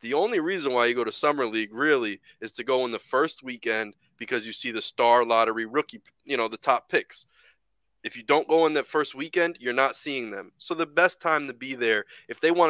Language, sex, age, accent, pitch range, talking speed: English, male, 20-39, American, 130-170 Hz, 240 wpm